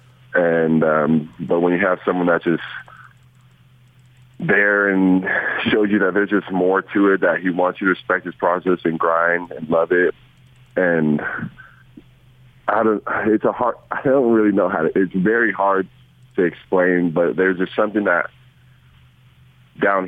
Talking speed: 165 wpm